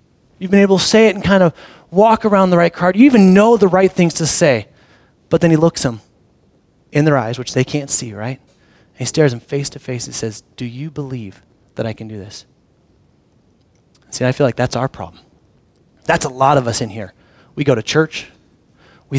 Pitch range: 130-170 Hz